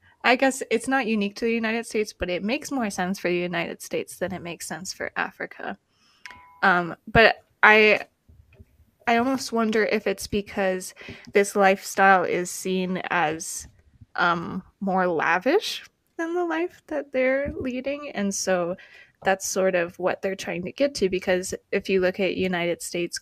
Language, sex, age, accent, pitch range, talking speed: English, female, 20-39, American, 185-225 Hz, 170 wpm